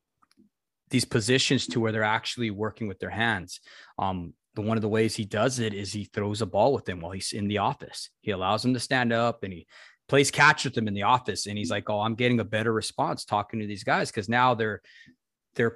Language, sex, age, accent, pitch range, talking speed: English, male, 20-39, American, 100-125 Hz, 240 wpm